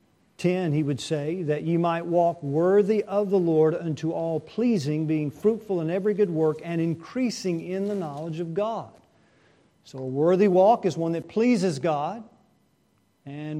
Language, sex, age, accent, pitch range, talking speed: English, male, 50-69, American, 155-195 Hz, 165 wpm